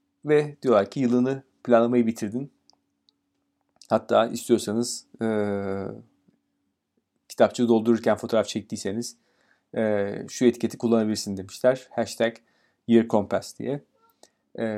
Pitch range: 110-125 Hz